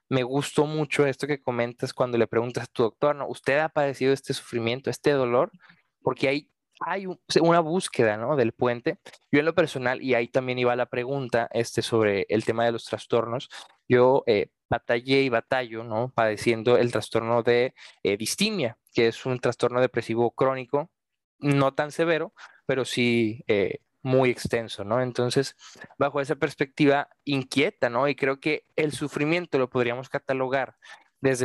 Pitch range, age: 125-150 Hz, 20-39